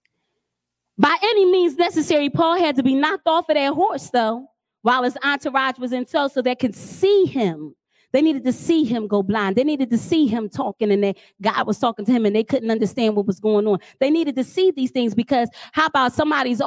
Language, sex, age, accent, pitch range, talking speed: English, female, 30-49, American, 235-300 Hz, 225 wpm